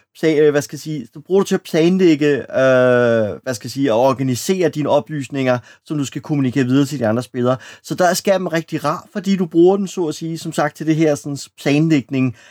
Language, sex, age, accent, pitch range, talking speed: Danish, male, 30-49, native, 125-165 Hz, 205 wpm